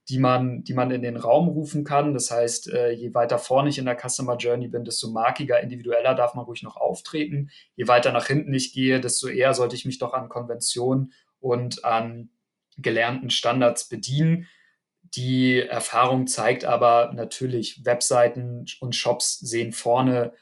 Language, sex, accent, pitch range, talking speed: German, male, German, 115-125 Hz, 170 wpm